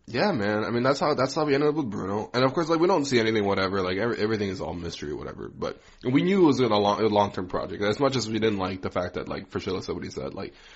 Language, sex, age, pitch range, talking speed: English, male, 20-39, 95-110 Hz, 310 wpm